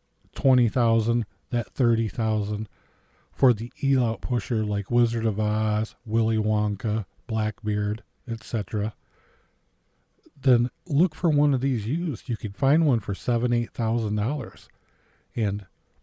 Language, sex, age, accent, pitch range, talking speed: English, male, 50-69, American, 105-125 Hz, 125 wpm